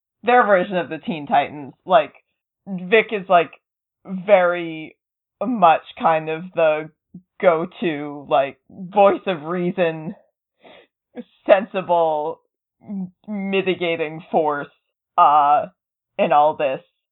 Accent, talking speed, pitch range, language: American, 95 wpm, 165-220 Hz, English